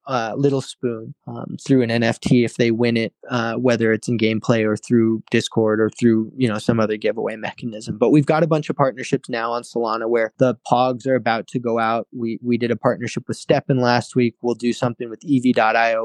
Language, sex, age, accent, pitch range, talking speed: English, male, 20-39, American, 115-130 Hz, 220 wpm